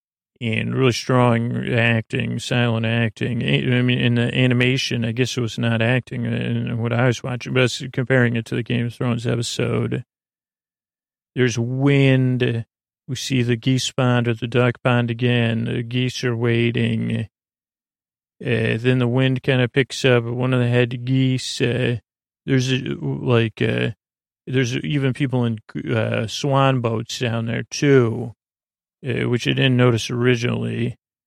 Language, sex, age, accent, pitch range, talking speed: English, male, 40-59, American, 115-130 Hz, 155 wpm